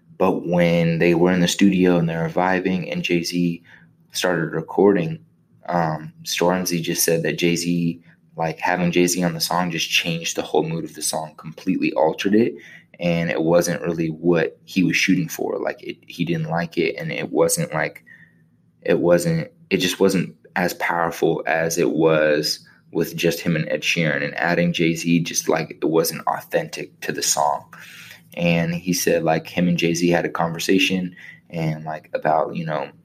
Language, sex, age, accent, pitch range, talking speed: English, male, 20-39, American, 85-95 Hz, 180 wpm